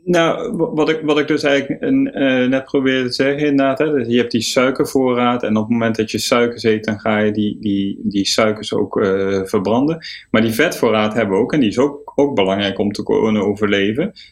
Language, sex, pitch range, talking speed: Dutch, male, 105-130 Hz, 205 wpm